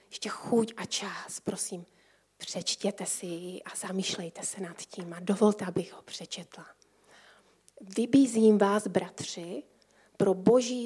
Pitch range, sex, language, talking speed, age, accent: 185-210 Hz, female, Czech, 125 wpm, 30-49, native